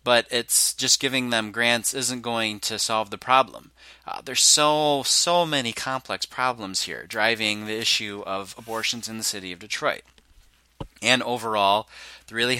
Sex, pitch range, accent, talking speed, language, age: male, 105-125 Hz, American, 160 wpm, English, 30-49